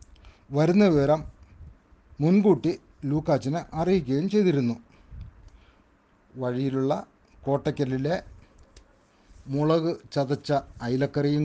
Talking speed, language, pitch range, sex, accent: 60 wpm, Malayalam, 105-145 Hz, male, native